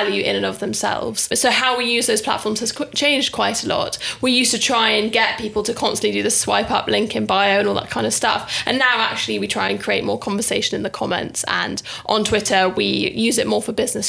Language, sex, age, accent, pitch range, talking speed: English, female, 10-29, British, 215-240 Hz, 255 wpm